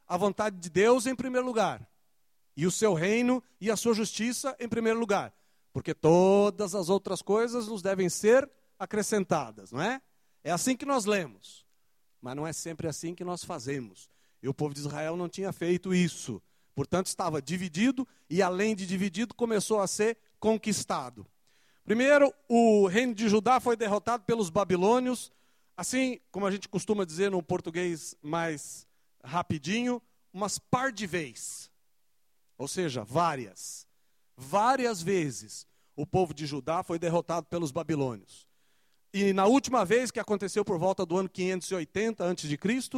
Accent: Brazilian